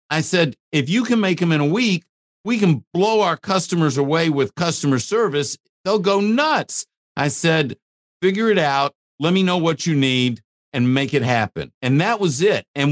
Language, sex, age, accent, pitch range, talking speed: English, male, 50-69, American, 115-165 Hz, 195 wpm